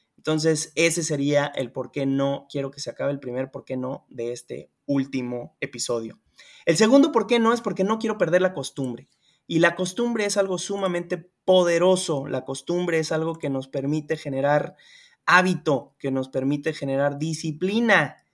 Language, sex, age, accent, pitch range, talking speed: Spanish, male, 20-39, Mexican, 140-180 Hz, 175 wpm